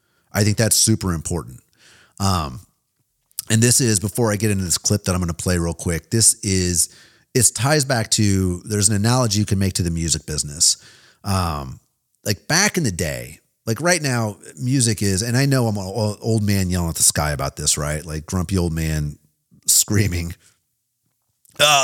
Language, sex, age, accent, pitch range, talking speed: English, male, 30-49, American, 90-125 Hz, 190 wpm